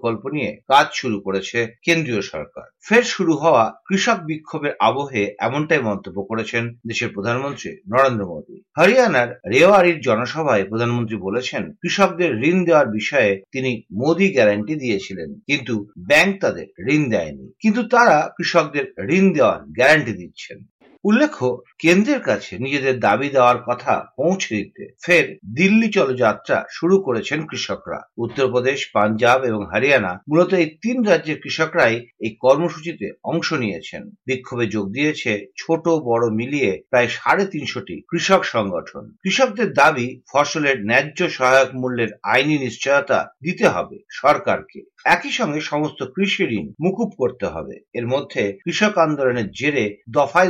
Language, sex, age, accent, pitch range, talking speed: Bengali, male, 50-69, native, 115-175 Hz, 125 wpm